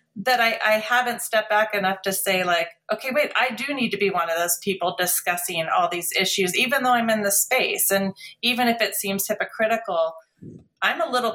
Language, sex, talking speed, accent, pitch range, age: English, female, 210 wpm, American, 180-215 Hz, 30-49